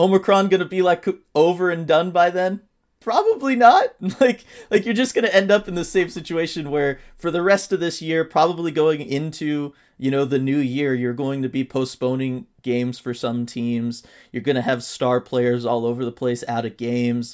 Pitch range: 125-165 Hz